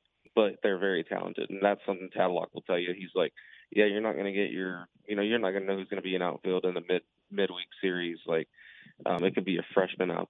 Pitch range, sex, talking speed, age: 90-105 Hz, male, 250 wpm, 20-39